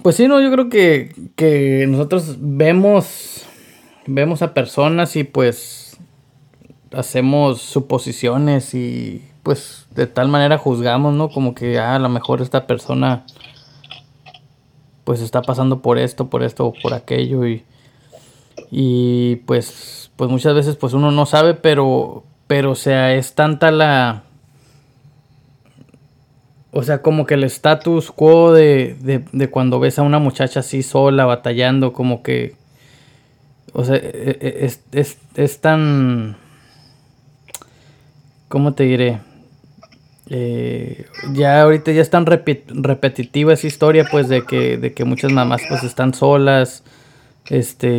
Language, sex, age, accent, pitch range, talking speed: Spanish, male, 20-39, Mexican, 125-145 Hz, 135 wpm